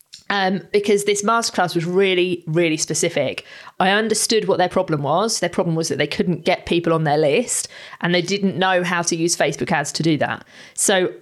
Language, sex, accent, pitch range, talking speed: English, female, British, 170-215 Hz, 205 wpm